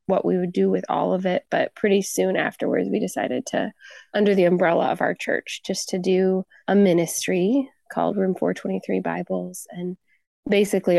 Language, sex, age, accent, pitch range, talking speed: English, female, 20-39, American, 175-205 Hz, 175 wpm